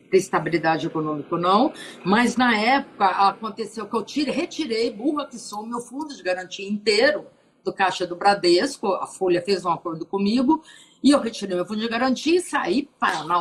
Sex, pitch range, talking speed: female, 190-255 Hz, 185 wpm